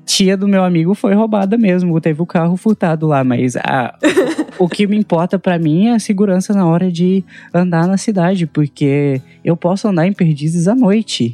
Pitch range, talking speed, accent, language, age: 140-195 Hz, 190 wpm, Brazilian, Portuguese, 10-29